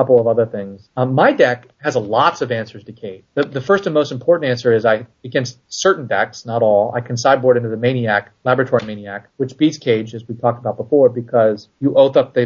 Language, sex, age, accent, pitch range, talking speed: English, male, 30-49, American, 115-130 Hz, 230 wpm